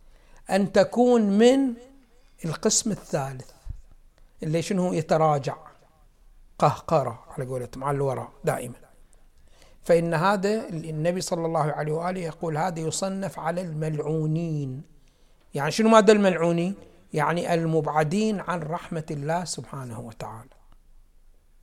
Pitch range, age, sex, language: 150-195 Hz, 60-79, male, Arabic